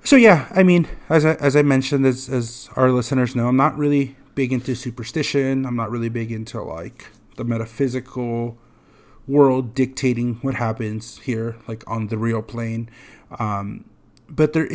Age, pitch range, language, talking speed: 30-49, 115-135 Hz, English, 165 wpm